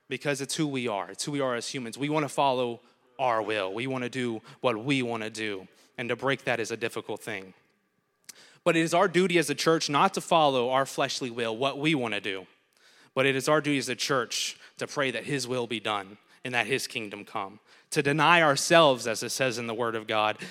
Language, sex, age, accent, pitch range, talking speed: English, male, 20-39, American, 115-145 Hz, 235 wpm